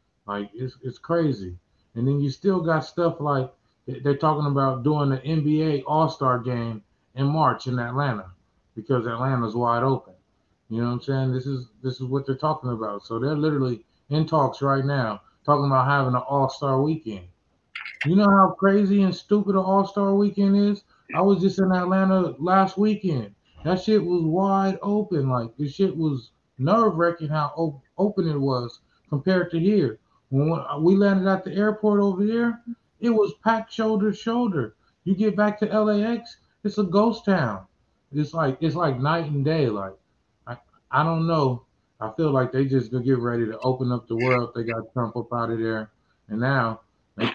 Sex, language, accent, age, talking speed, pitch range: male, English, American, 20-39, 185 wpm, 125-180 Hz